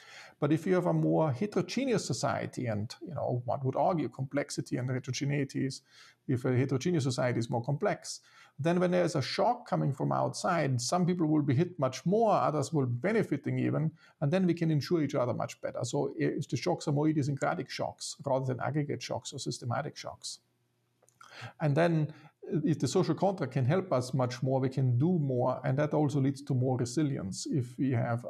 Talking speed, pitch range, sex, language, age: 195 wpm, 130-155 Hz, male, English, 50-69